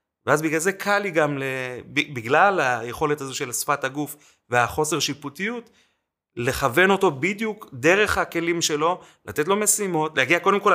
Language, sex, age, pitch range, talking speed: Hebrew, male, 30-49, 125-160 Hz, 150 wpm